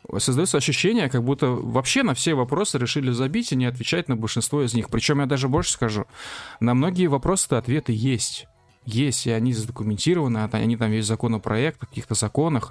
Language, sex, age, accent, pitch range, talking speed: Russian, male, 20-39, native, 120-145 Hz, 180 wpm